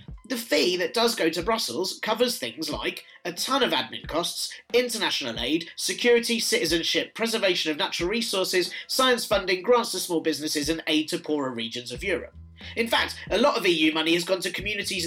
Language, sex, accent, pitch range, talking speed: English, male, British, 160-230 Hz, 185 wpm